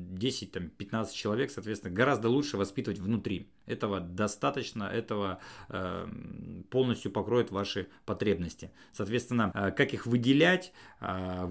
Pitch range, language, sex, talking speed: 100-125 Hz, Russian, male, 110 wpm